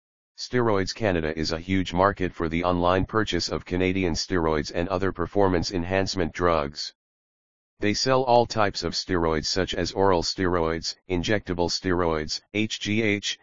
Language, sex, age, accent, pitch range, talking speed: English, male, 40-59, American, 80-95 Hz, 140 wpm